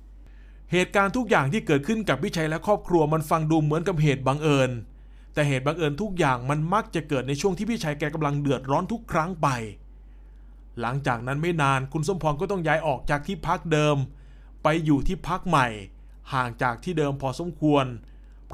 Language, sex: Thai, male